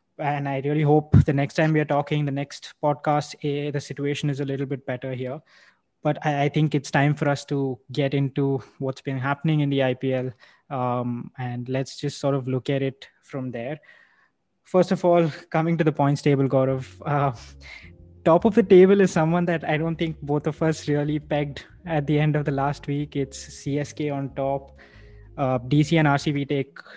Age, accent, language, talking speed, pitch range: 20-39, Indian, English, 200 wpm, 130-150 Hz